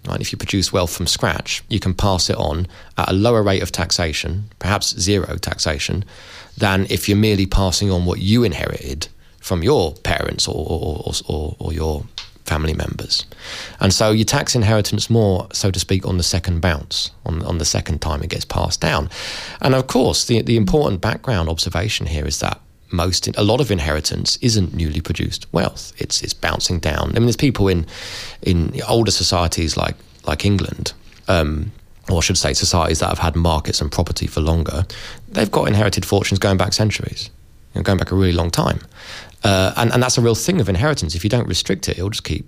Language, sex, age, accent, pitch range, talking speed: English, male, 20-39, British, 85-105 Hz, 200 wpm